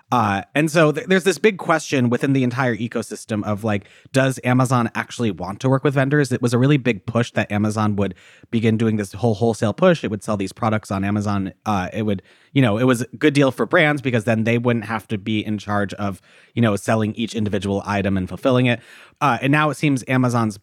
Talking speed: 235 wpm